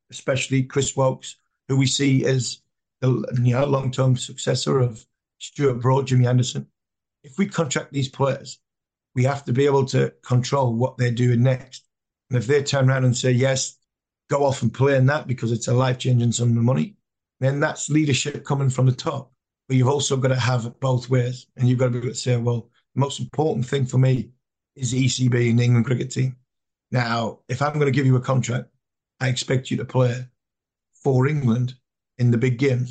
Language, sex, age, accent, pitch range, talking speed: English, male, 50-69, British, 125-135 Hz, 205 wpm